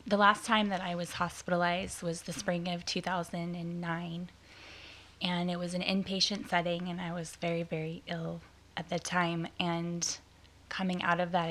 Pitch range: 165-185 Hz